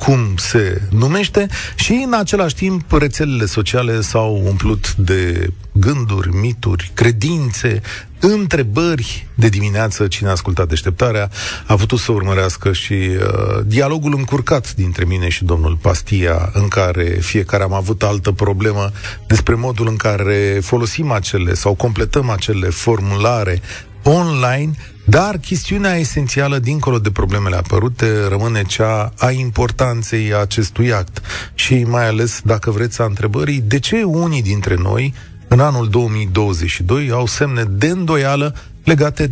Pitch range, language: 100-130 Hz, Romanian